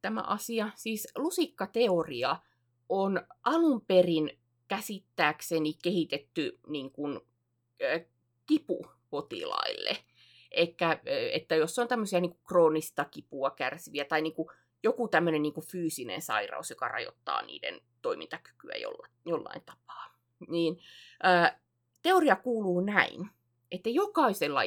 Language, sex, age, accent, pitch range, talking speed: Finnish, female, 20-39, native, 135-215 Hz, 100 wpm